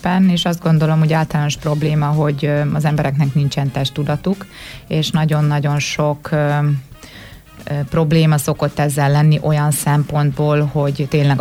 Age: 20-39